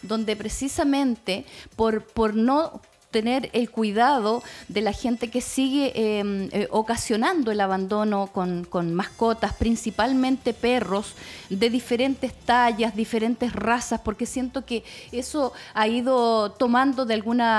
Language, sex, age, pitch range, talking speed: Spanish, female, 30-49, 210-255 Hz, 125 wpm